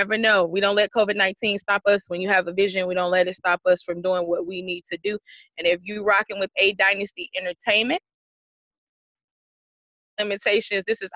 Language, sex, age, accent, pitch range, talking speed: English, female, 20-39, American, 190-235 Hz, 205 wpm